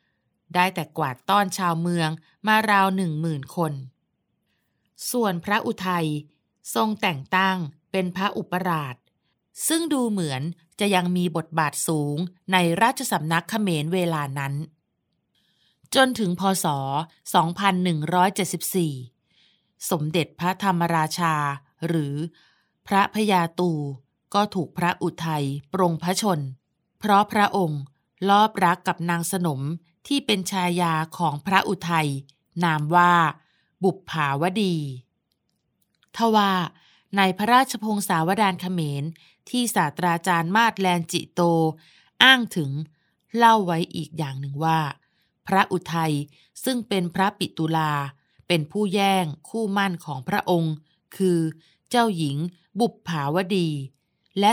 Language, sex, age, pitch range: Thai, female, 20-39, 155-195 Hz